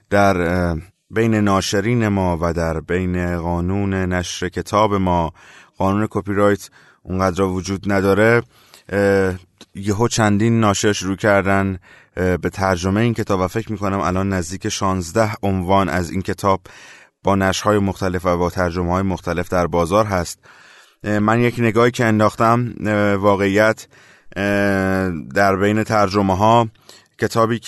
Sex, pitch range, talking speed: male, 90-110 Hz, 125 wpm